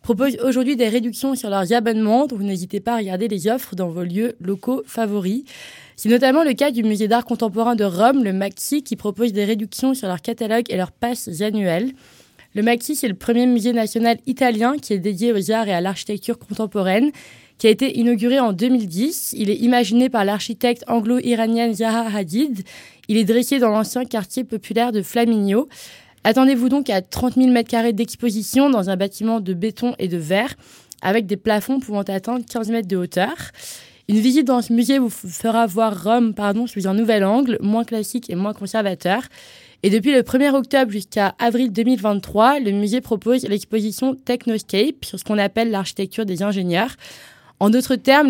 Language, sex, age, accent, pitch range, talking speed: French, female, 20-39, French, 205-245 Hz, 185 wpm